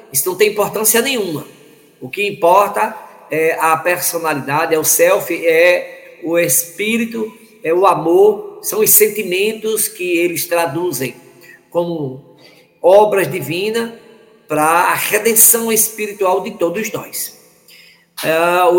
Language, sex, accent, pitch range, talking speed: Portuguese, male, Brazilian, 160-240 Hz, 120 wpm